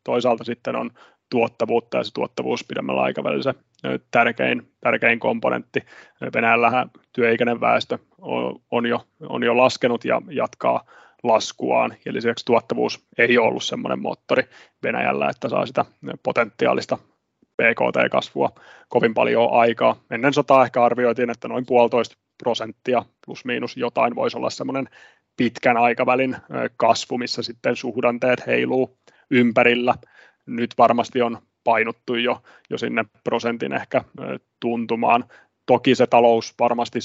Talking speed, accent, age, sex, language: 125 wpm, native, 30-49, male, Finnish